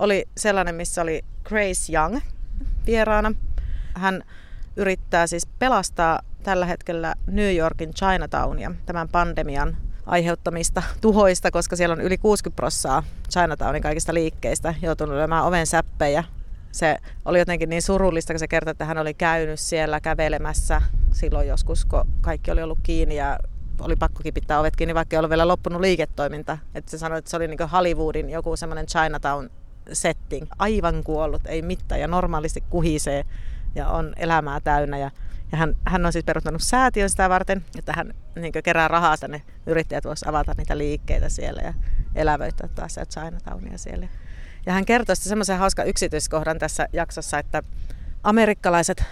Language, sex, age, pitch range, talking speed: Finnish, female, 30-49, 150-180 Hz, 155 wpm